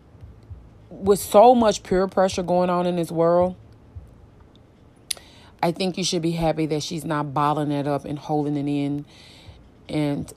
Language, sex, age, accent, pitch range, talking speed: English, female, 30-49, American, 140-175 Hz, 155 wpm